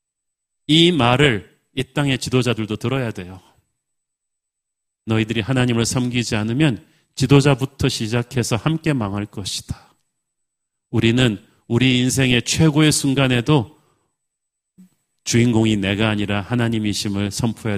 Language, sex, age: Korean, male, 40-59